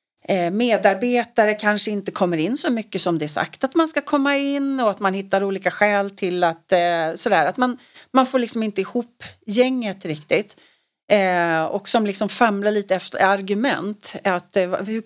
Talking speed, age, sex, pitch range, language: 170 wpm, 40-59, female, 205-265 Hz, Swedish